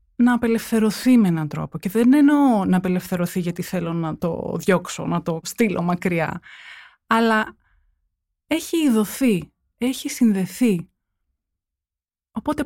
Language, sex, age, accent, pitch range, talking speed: Greek, female, 20-39, native, 165-260 Hz, 120 wpm